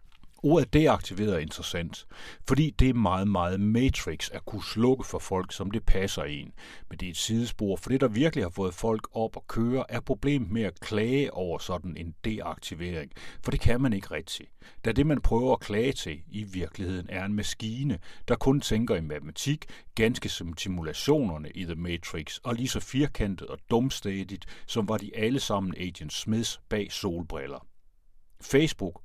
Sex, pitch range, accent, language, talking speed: male, 90-120 Hz, native, Danish, 180 wpm